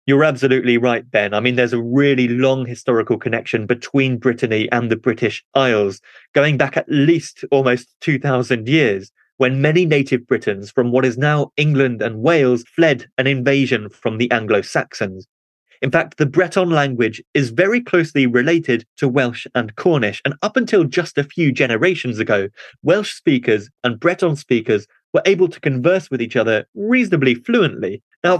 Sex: male